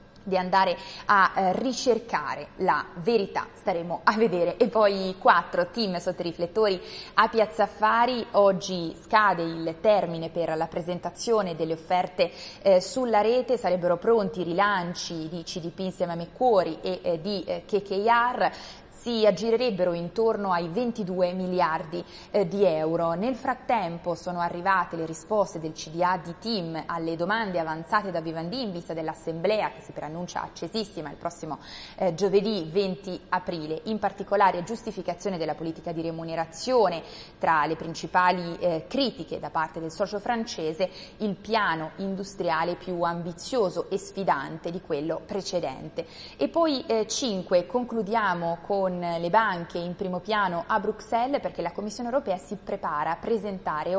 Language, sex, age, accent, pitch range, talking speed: Italian, female, 20-39, native, 170-210 Hz, 140 wpm